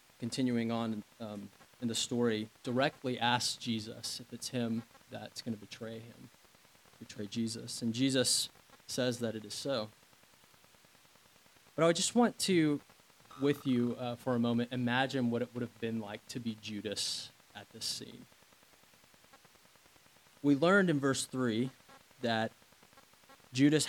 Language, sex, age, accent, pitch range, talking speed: English, male, 20-39, American, 115-135 Hz, 145 wpm